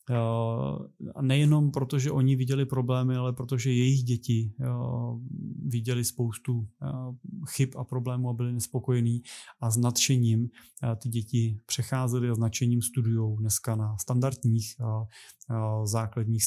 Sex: male